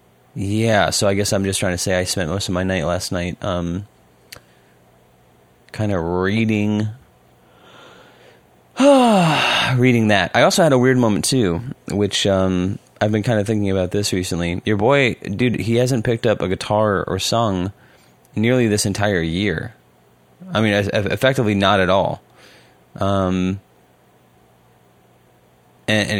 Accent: American